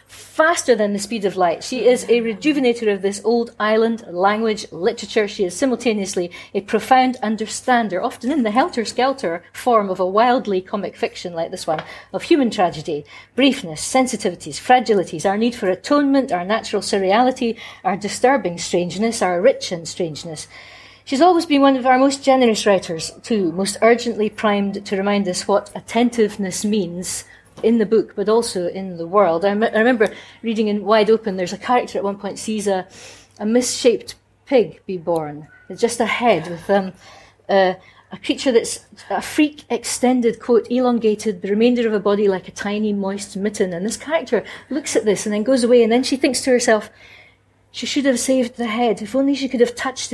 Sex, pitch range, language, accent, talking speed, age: female, 195-245 Hz, English, British, 185 wpm, 40-59